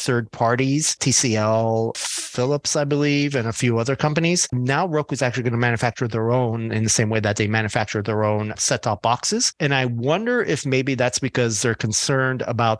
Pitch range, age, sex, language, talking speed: 105-130 Hz, 30-49, male, English, 190 wpm